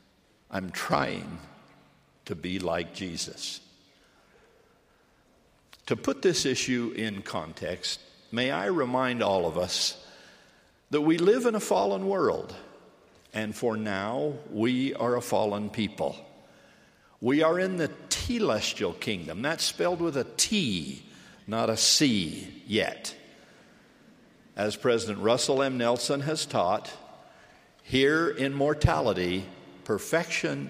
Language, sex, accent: English, male, American